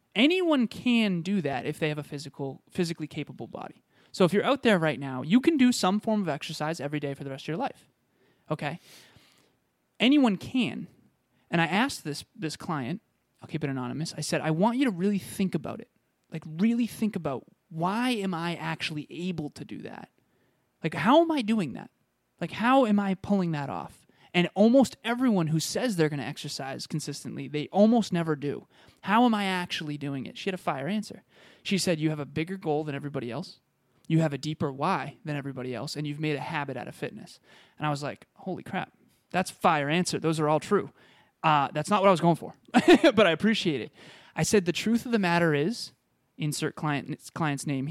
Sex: male